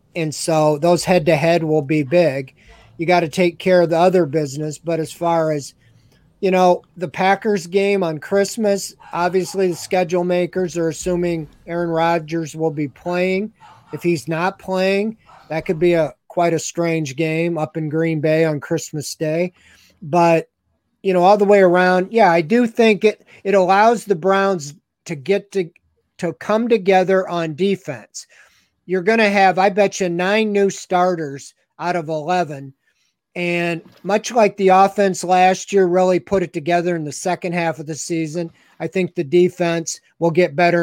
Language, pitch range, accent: English, 165-190 Hz, American